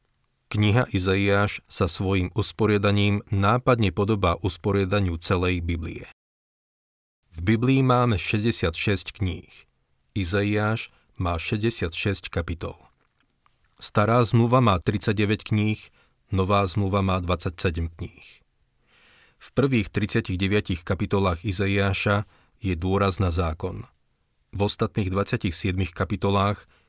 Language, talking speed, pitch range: Slovak, 95 wpm, 90-105 Hz